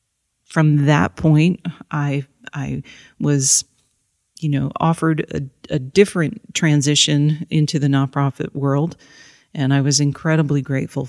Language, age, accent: English, 40-59, American